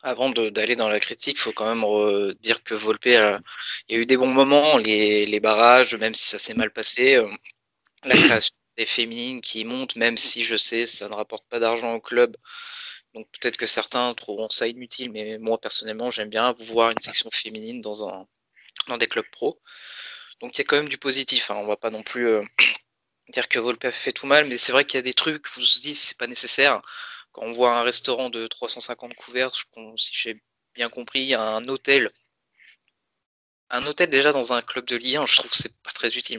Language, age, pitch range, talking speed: French, 20-39, 110-130 Hz, 230 wpm